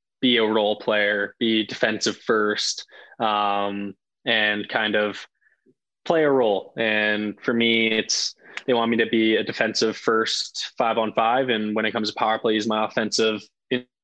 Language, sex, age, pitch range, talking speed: English, male, 20-39, 105-120 Hz, 165 wpm